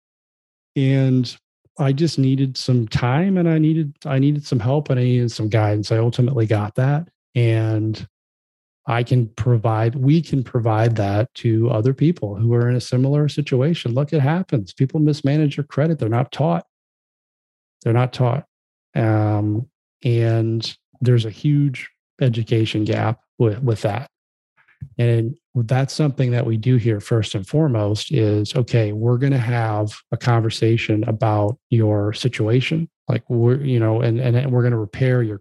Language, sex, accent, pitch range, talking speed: English, male, American, 110-135 Hz, 160 wpm